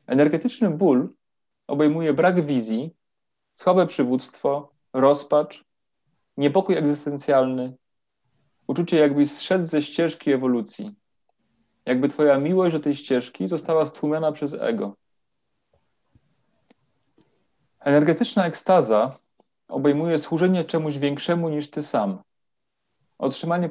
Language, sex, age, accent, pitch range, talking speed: Polish, male, 30-49, native, 140-165 Hz, 90 wpm